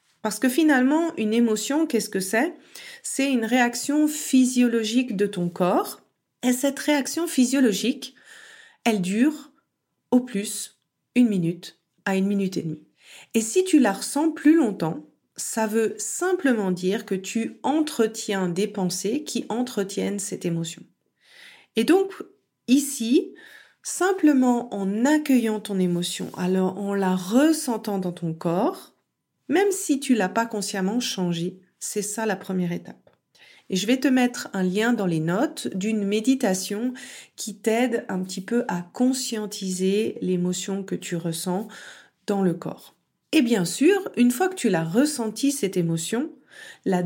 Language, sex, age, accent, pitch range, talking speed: French, female, 40-59, French, 190-265 Hz, 145 wpm